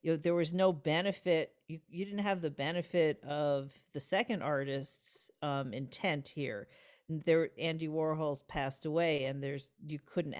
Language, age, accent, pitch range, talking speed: English, 50-69, American, 135-155 Hz, 160 wpm